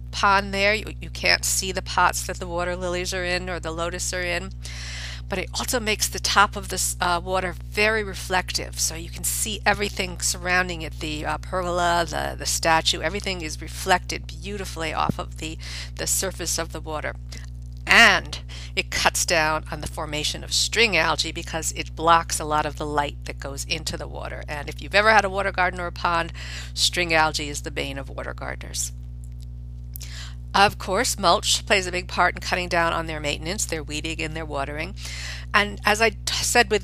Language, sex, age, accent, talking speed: English, female, 50-69, American, 195 wpm